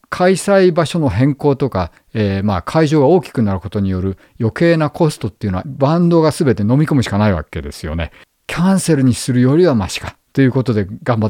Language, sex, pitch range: Japanese, male, 100-140 Hz